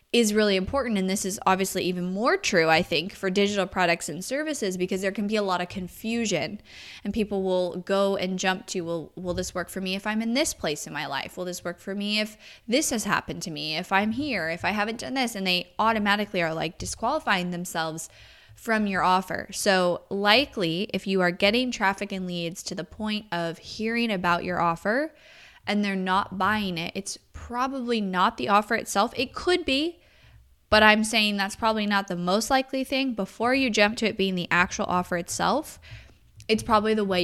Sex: female